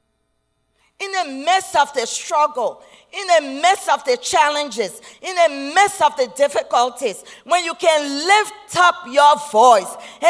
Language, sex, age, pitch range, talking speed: English, female, 40-59, 240-340 Hz, 145 wpm